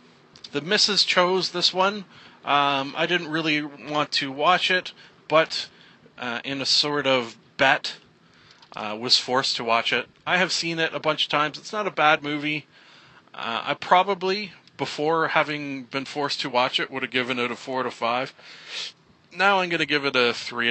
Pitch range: 125-170 Hz